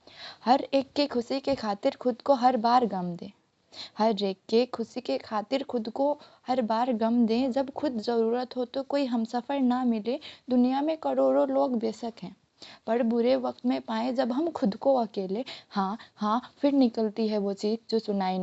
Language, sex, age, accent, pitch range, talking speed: Hindi, female, 20-39, native, 220-275 Hz, 190 wpm